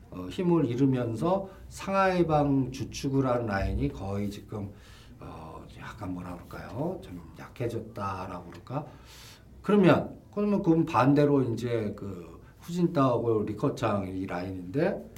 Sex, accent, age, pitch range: male, native, 50-69, 110-160 Hz